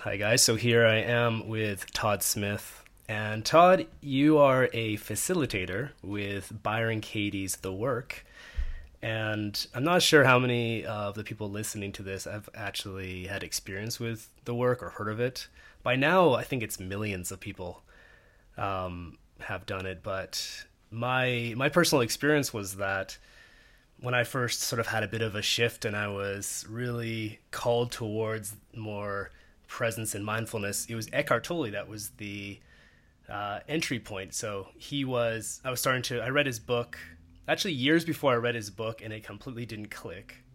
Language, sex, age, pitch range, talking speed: English, male, 20-39, 100-125 Hz, 170 wpm